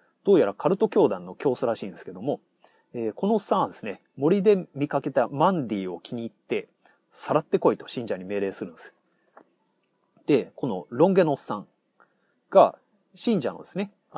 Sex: male